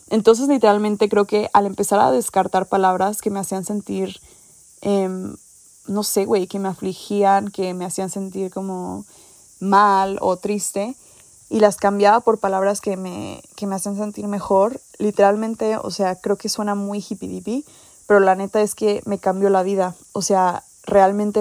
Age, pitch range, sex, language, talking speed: 20-39, 190-210 Hz, female, English, 170 wpm